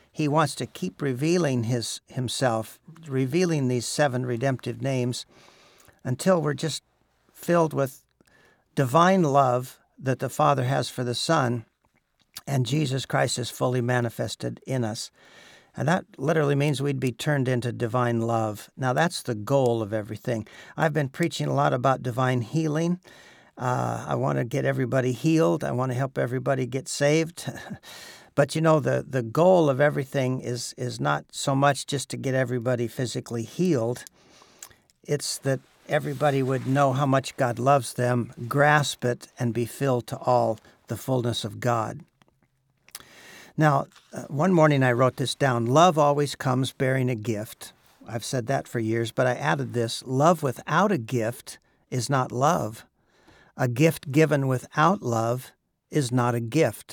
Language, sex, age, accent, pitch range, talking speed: English, male, 60-79, American, 120-145 Hz, 155 wpm